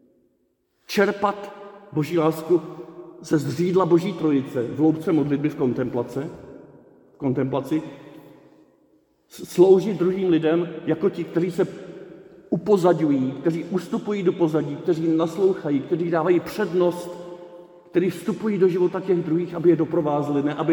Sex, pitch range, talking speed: male, 140-175 Hz, 115 wpm